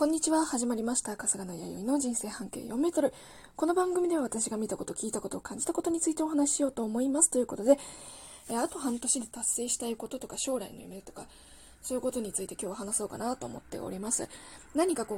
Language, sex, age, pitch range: Japanese, female, 20-39, 220-300 Hz